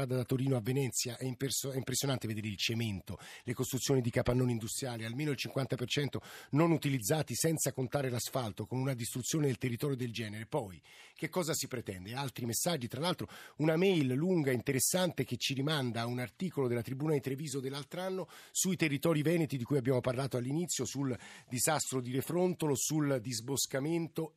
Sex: male